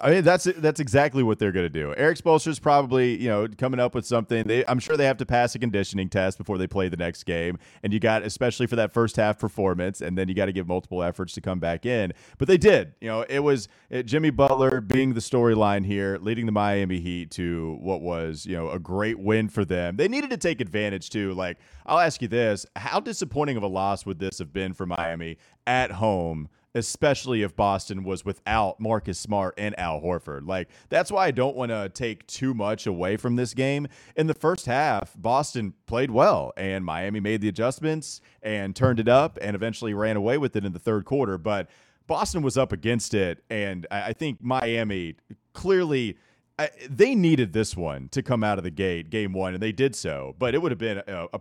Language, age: English, 30-49